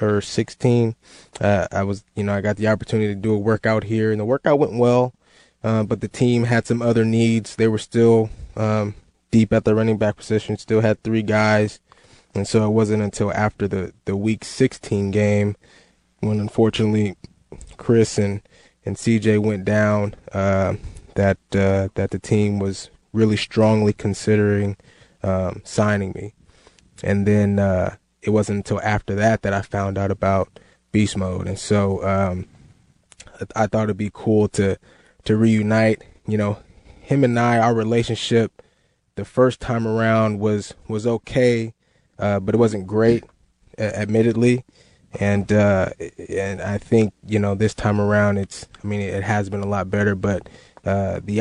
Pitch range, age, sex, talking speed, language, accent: 100-110 Hz, 20-39, male, 170 wpm, English, American